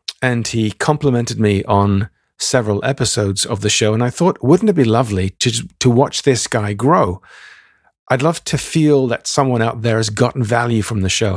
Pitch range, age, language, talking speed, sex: 110-140 Hz, 40-59, English, 195 wpm, male